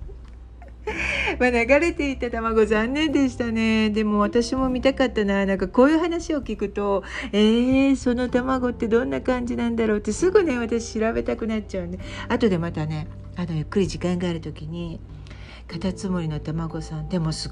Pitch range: 165-230 Hz